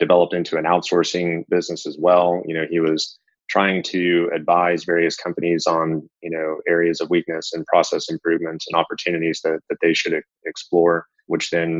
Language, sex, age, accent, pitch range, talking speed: English, male, 30-49, American, 80-90 Hz, 175 wpm